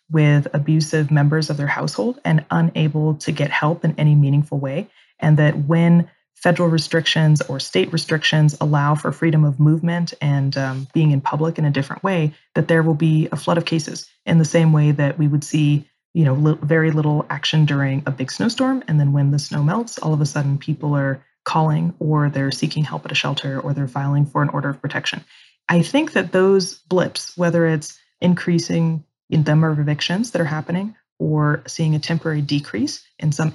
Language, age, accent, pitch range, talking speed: English, 30-49, American, 145-165 Hz, 200 wpm